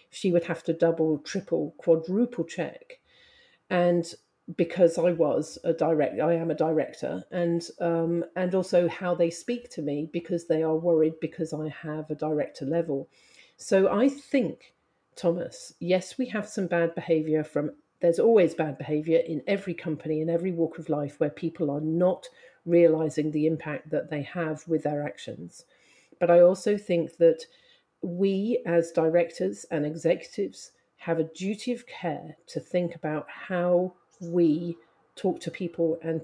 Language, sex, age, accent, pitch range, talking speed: English, female, 50-69, British, 160-180 Hz, 160 wpm